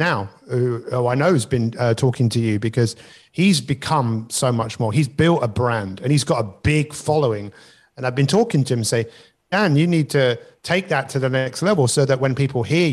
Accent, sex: British, male